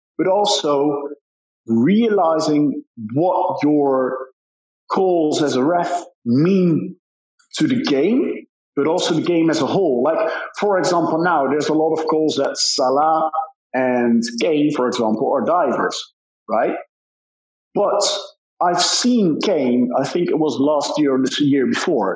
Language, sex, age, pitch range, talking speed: English, male, 50-69, 145-205 Hz, 140 wpm